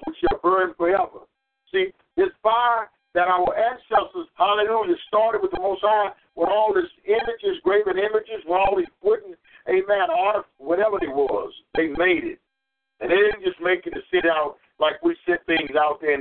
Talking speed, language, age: 185 wpm, English, 50-69